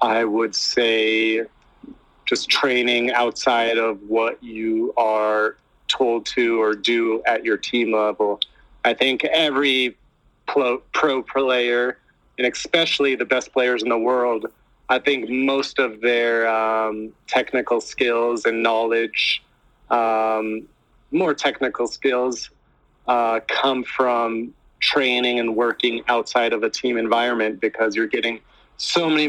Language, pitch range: English, 115-125 Hz